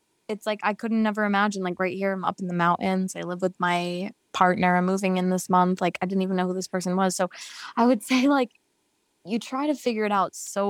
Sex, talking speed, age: female, 250 wpm, 20-39